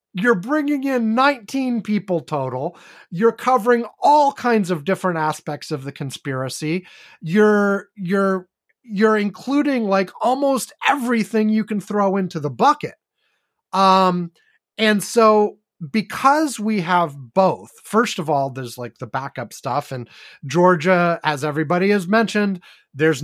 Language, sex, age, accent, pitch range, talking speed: English, male, 30-49, American, 170-220 Hz, 130 wpm